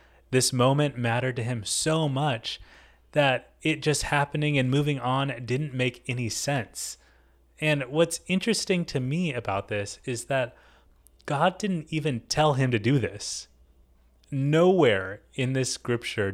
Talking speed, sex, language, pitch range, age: 145 wpm, male, English, 100-145 Hz, 30-49